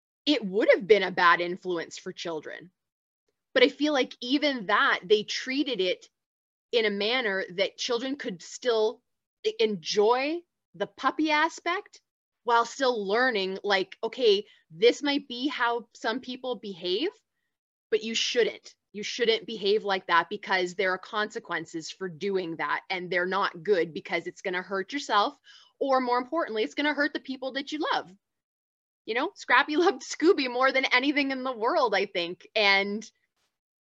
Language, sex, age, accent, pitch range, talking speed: English, female, 20-39, American, 200-275 Hz, 160 wpm